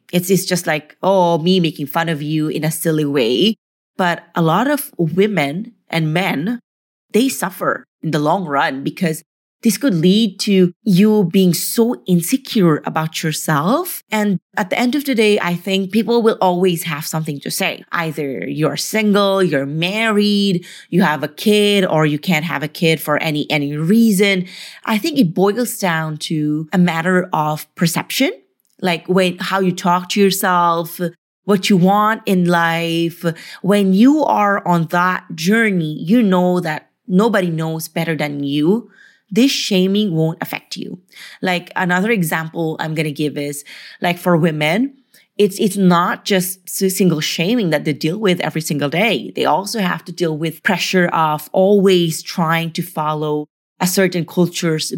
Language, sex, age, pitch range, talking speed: English, female, 30-49, 160-205 Hz, 165 wpm